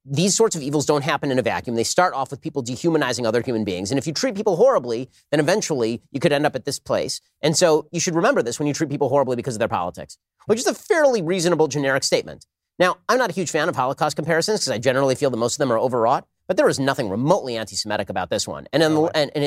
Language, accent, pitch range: English, American, 115-150 Hz